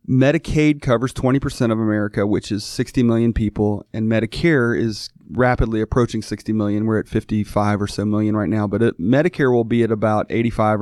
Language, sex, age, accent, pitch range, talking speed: English, male, 30-49, American, 110-135 Hz, 180 wpm